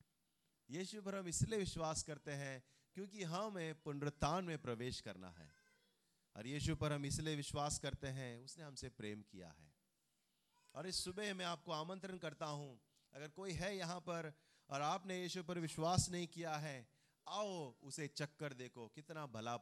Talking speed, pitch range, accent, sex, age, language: 75 wpm, 145-205 Hz, native, male, 30-49, Hindi